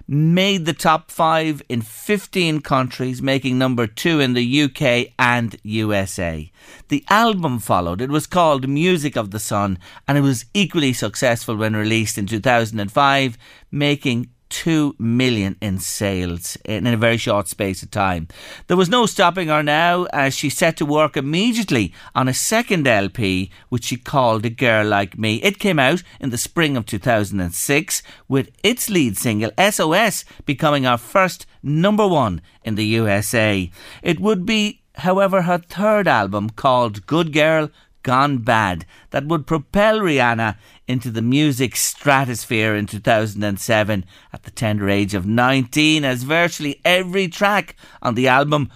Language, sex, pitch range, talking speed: English, male, 110-175 Hz, 155 wpm